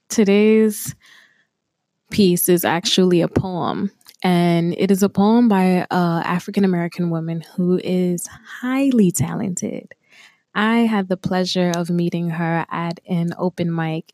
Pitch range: 170-195 Hz